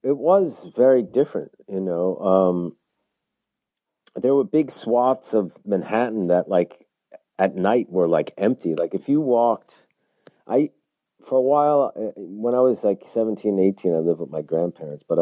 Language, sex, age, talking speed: English, male, 50-69, 160 wpm